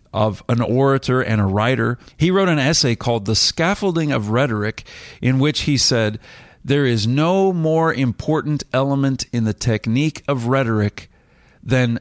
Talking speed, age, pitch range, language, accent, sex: 155 wpm, 40-59, 110-135 Hz, English, American, male